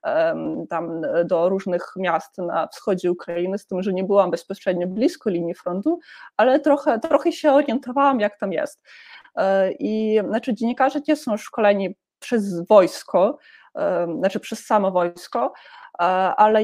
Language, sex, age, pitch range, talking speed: Polish, female, 20-39, 195-250 Hz, 135 wpm